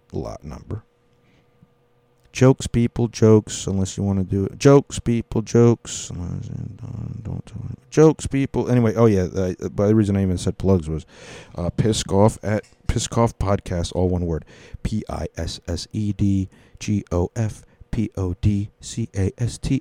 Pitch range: 90-120 Hz